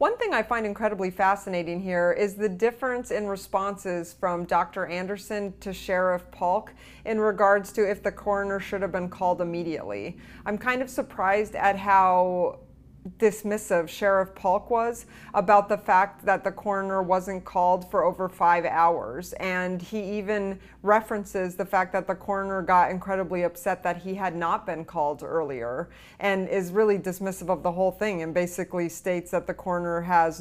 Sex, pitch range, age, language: female, 175-205 Hz, 30-49, English